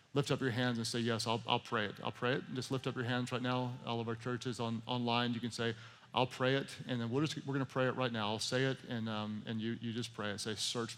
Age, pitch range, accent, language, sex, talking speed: 40-59, 110-135 Hz, American, English, male, 305 wpm